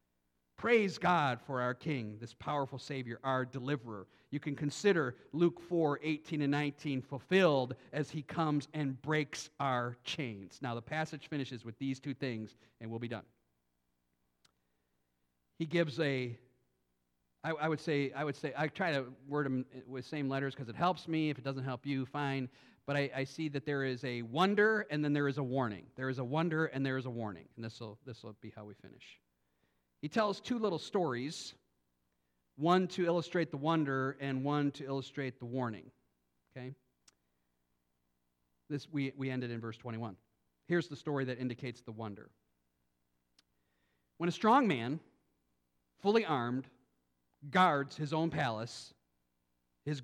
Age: 50-69